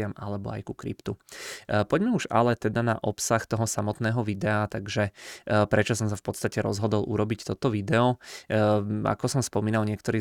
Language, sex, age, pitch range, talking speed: Czech, male, 20-39, 105-110 Hz, 160 wpm